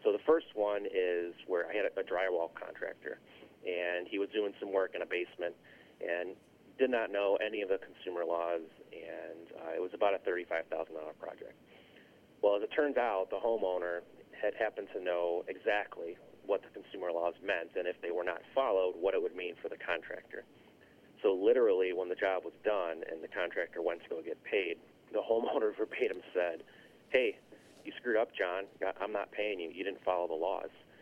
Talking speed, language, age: 195 wpm, English, 30-49